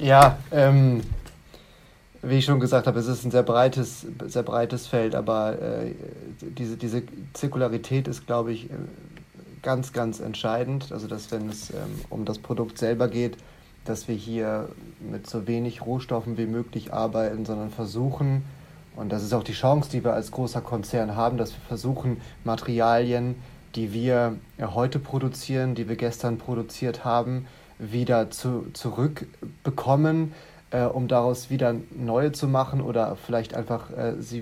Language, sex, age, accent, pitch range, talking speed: German, male, 30-49, German, 115-140 Hz, 150 wpm